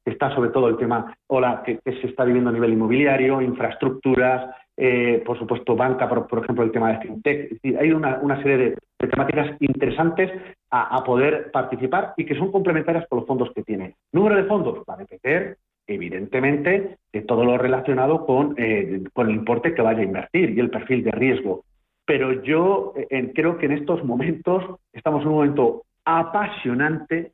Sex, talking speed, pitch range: male, 185 wpm, 125-170 Hz